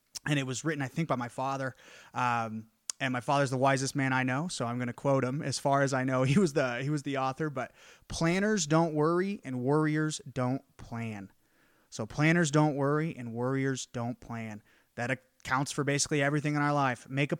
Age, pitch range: 30-49, 130-160 Hz